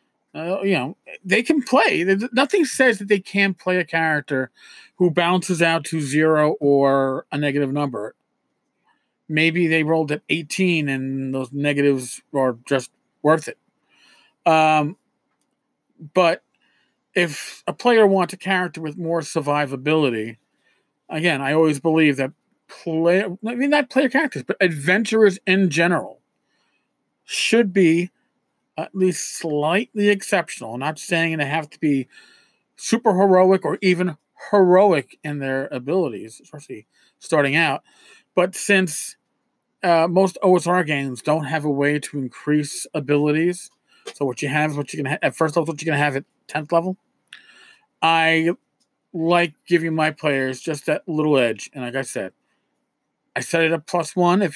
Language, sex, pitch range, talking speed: English, male, 150-195 Hz, 150 wpm